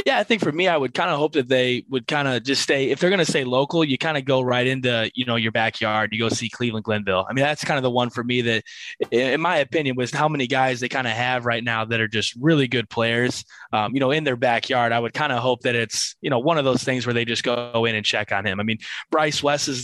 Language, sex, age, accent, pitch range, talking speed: English, male, 20-39, American, 115-135 Hz, 305 wpm